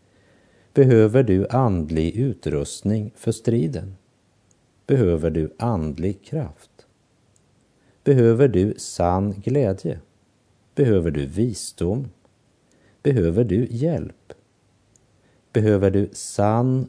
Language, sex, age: Polish, male, 50-69